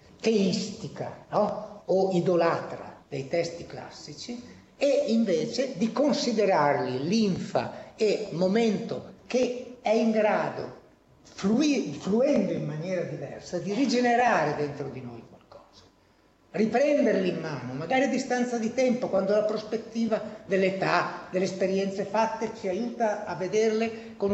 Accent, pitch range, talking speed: native, 165-225 Hz, 120 wpm